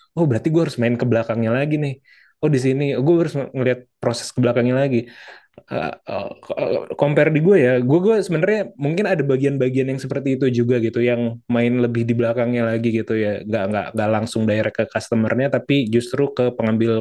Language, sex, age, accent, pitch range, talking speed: Indonesian, male, 20-39, native, 120-150 Hz, 200 wpm